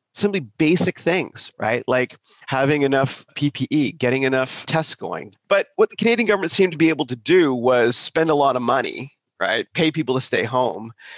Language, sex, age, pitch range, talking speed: English, male, 30-49, 120-160 Hz, 190 wpm